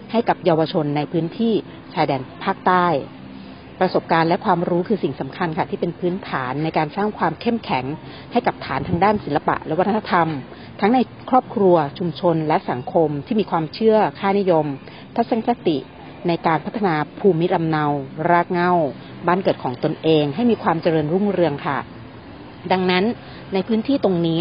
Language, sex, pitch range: Thai, female, 155-200 Hz